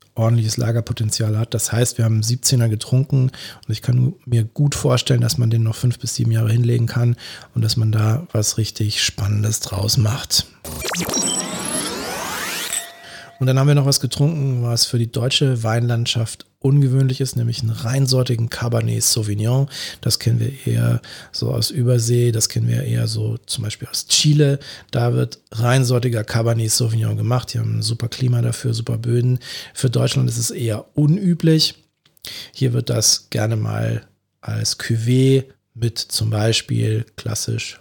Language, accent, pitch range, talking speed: German, German, 110-130 Hz, 160 wpm